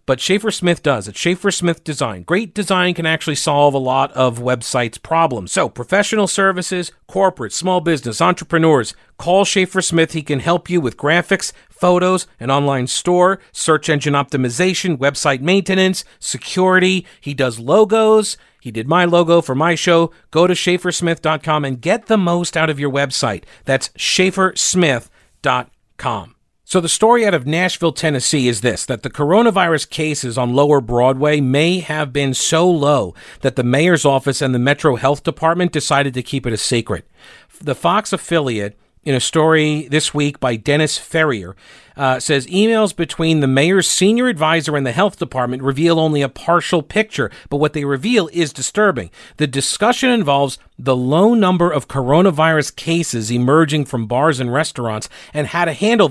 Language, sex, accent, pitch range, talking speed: English, male, American, 135-180 Hz, 165 wpm